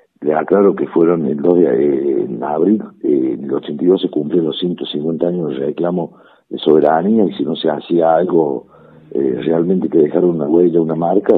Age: 60-79